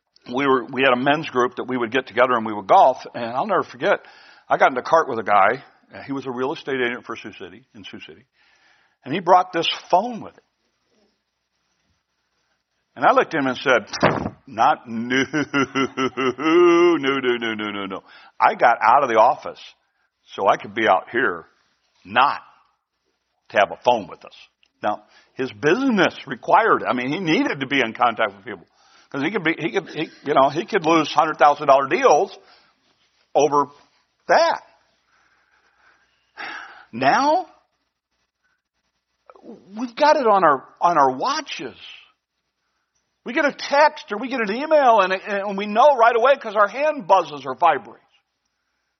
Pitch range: 125-205 Hz